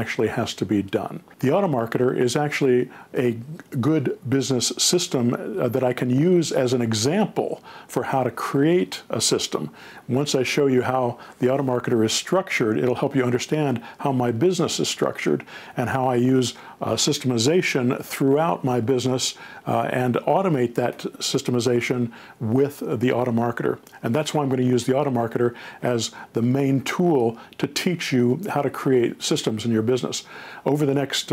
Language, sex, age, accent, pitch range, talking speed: English, male, 50-69, American, 120-145 Hz, 170 wpm